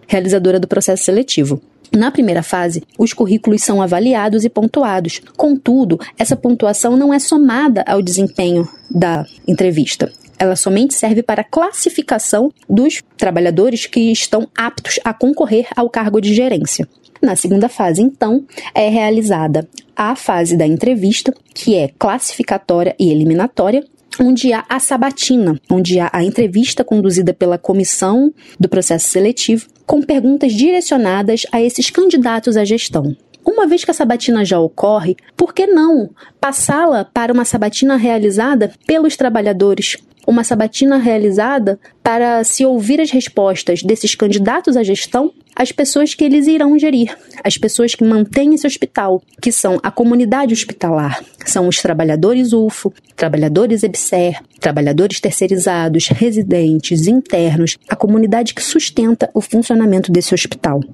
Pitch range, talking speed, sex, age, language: 190-255 Hz, 140 wpm, female, 20-39, Portuguese